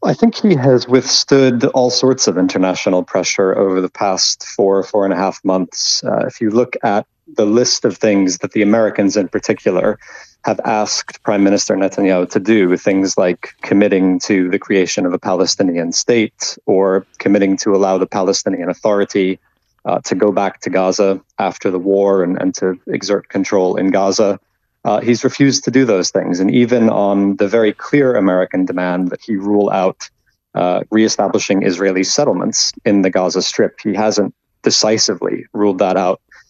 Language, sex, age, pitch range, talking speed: English, male, 30-49, 95-110 Hz, 175 wpm